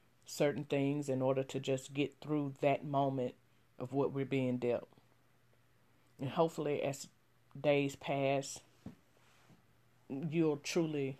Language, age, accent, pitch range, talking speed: English, 40-59, American, 130-155 Hz, 120 wpm